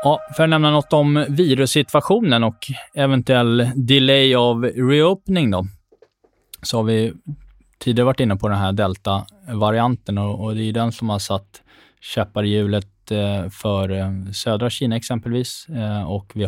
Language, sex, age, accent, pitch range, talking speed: Swedish, male, 20-39, native, 100-120 Hz, 145 wpm